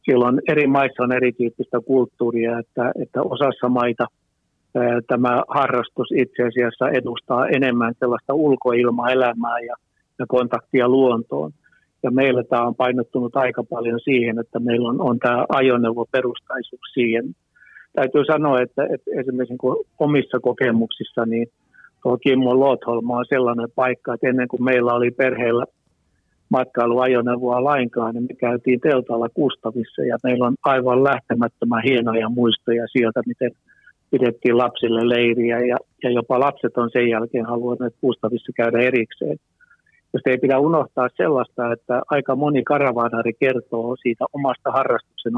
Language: Finnish